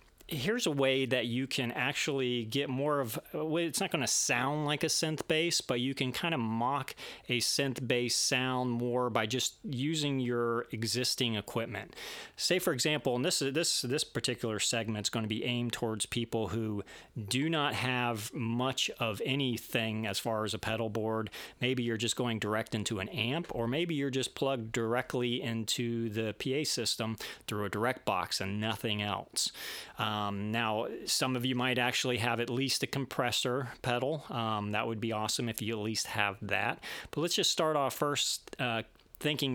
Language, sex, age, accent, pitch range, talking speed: English, male, 40-59, American, 115-140 Hz, 190 wpm